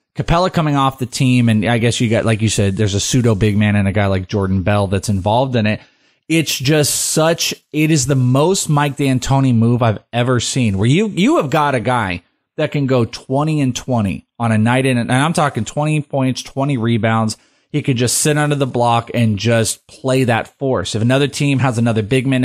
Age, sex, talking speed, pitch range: 30-49, male, 225 wpm, 115-140 Hz